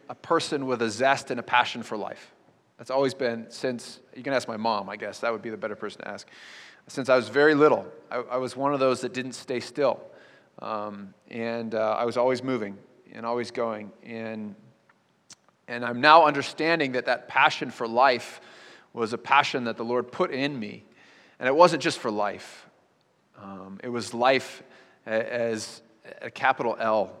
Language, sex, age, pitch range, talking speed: English, male, 30-49, 115-135 Hz, 190 wpm